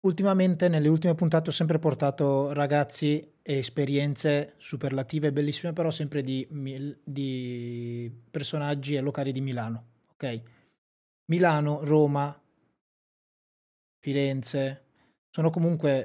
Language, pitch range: Italian, 135-155 Hz